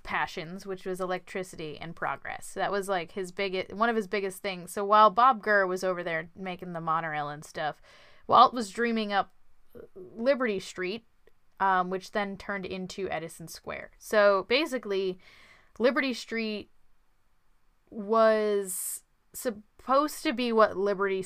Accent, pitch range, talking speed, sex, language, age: American, 180-220 Hz, 145 wpm, female, English, 10-29